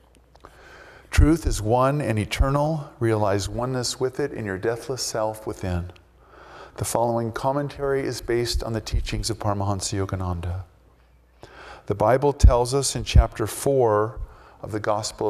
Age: 50-69